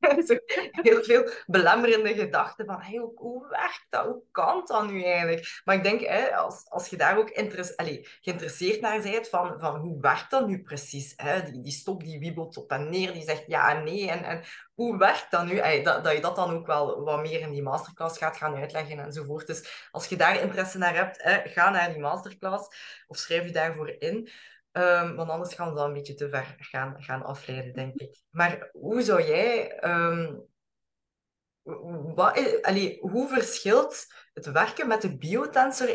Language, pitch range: Dutch, 150-200 Hz